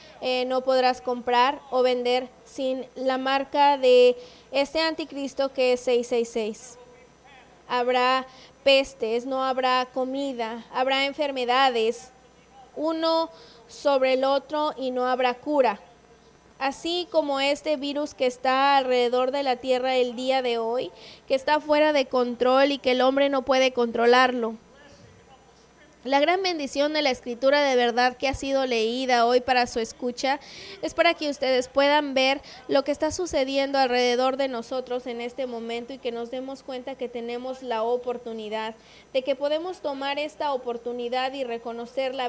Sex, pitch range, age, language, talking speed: female, 245-275 Hz, 20-39, English, 150 wpm